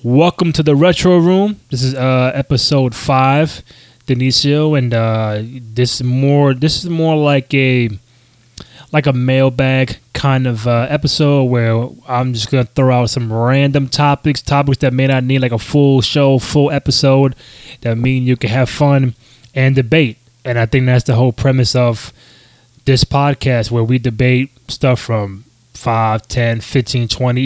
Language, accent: English, American